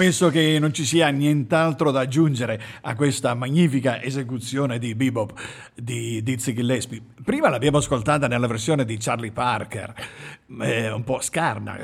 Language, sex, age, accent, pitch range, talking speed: Italian, male, 50-69, native, 115-155 Hz, 145 wpm